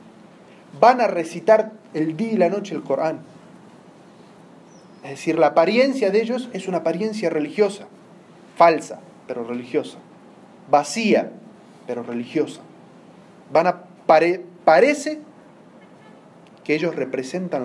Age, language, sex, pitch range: 30-49, Spanish, male, 150-215 Hz